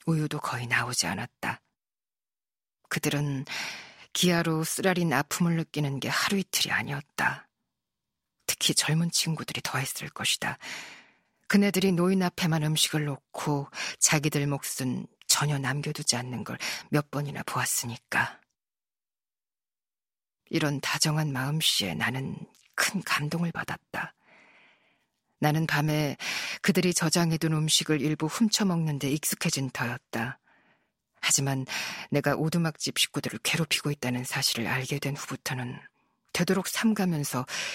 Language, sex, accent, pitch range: Korean, female, native, 135-170 Hz